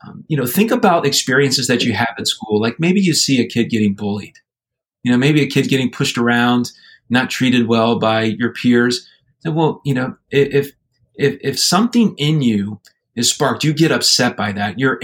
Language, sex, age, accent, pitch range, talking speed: English, male, 30-49, American, 110-135 Hz, 205 wpm